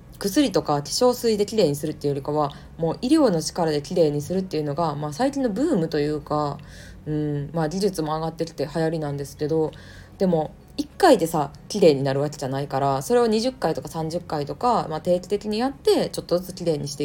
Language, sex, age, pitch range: Japanese, female, 20-39, 145-190 Hz